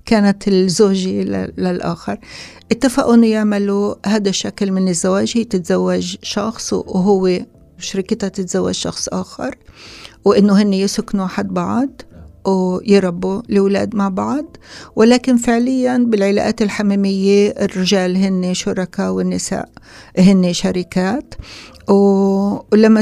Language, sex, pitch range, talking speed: Arabic, female, 185-215 Hz, 100 wpm